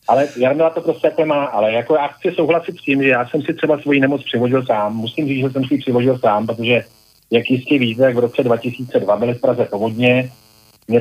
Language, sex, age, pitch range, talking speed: Slovak, male, 40-59, 115-135 Hz, 225 wpm